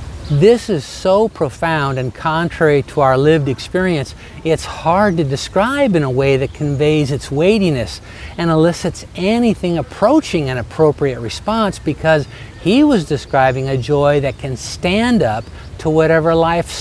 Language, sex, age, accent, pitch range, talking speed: English, male, 50-69, American, 125-185 Hz, 145 wpm